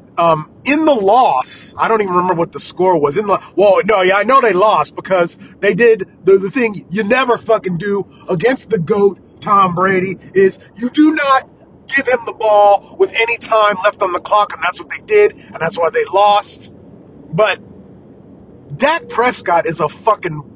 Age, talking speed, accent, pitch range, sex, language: 30-49, 200 wpm, American, 185-235 Hz, male, English